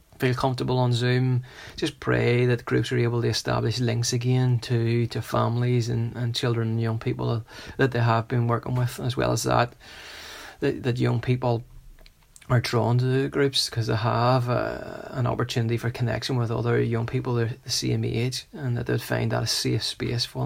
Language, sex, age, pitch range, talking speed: English, male, 30-49, 115-125 Hz, 190 wpm